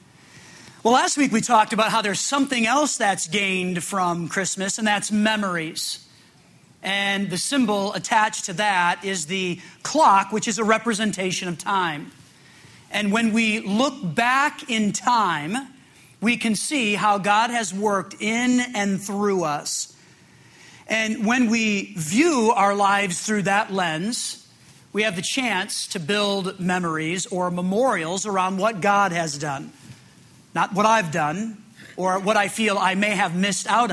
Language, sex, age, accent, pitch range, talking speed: English, male, 40-59, American, 185-225 Hz, 150 wpm